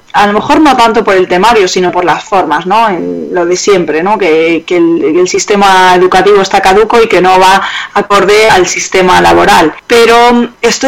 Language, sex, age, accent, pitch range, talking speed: Spanish, female, 20-39, Spanish, 185-285 Hz, 200 wpm